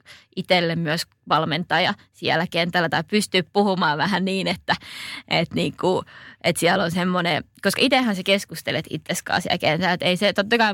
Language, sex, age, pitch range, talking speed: Finnish, female, 20-39, 165-195 Hz, 155 wpm